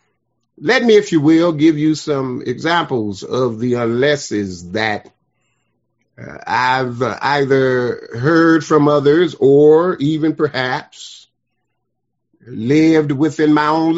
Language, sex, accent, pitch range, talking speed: English, male, American, 120-155 Hz, 110 wpm